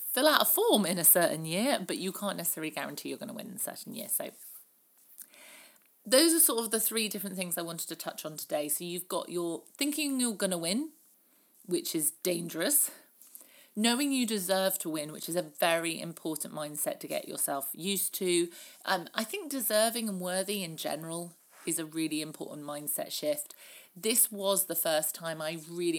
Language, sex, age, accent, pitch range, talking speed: English, female, 40-59, British, 155-205 Hz, 195 wpm